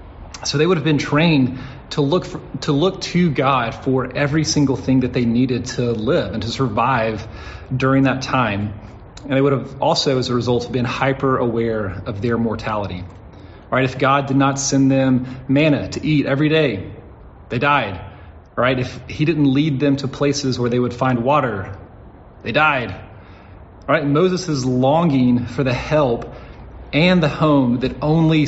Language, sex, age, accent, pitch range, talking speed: English, male, 30-49, American, 115-145 Hz, 180 wpm